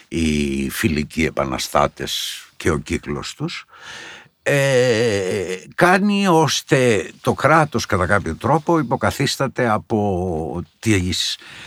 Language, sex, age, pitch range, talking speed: Greek, male, 60-79, 85-145 Hz, 85 wpm